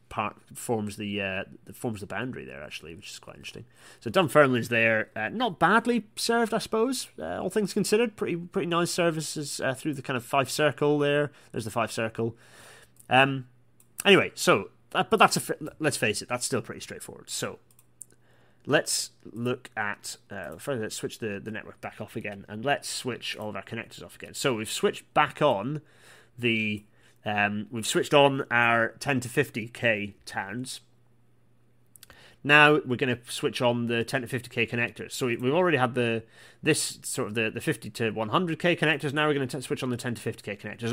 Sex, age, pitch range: male, 30-49, 115-150 Hz